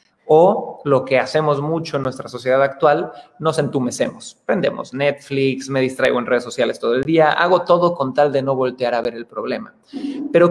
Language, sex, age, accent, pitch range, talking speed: Spanish, male, 30-49, Mexican, 140-175 Hz, 190 wpm